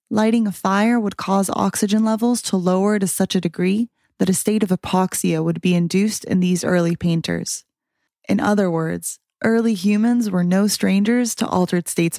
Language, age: English, 20-39